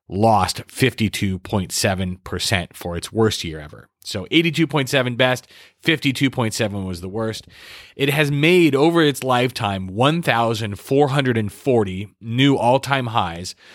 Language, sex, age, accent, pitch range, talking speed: English, male, 30-49, American, 100-130 Hz, 105 wpm